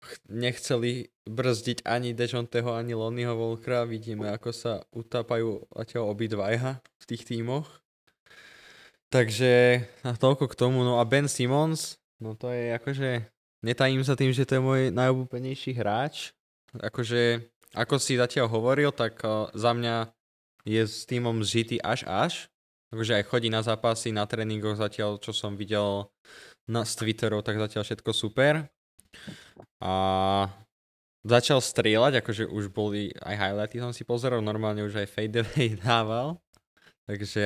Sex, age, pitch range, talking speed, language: male, 20-39, 110-125 Hz, 135 wpm, Slovak